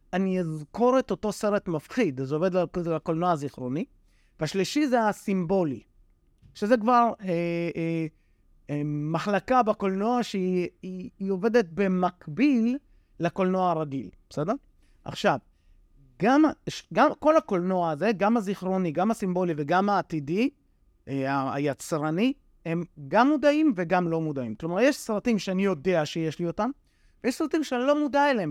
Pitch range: 155-215 Hz